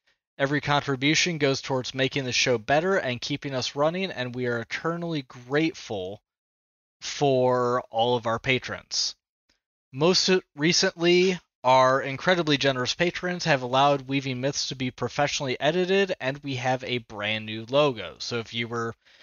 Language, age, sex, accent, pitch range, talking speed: English, 20-39, male, American, 125-155 Hz, 145 wpm